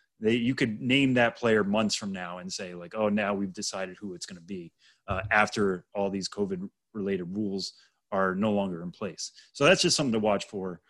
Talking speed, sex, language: 220 wpm, male, English